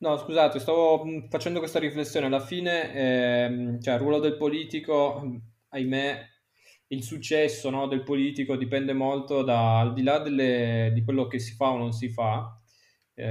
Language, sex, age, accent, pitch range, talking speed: Italian, male, 20-39, native, 120-145 Hz, 165 wpm